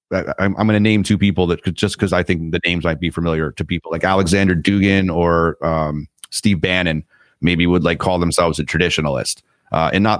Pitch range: 85-100 Hz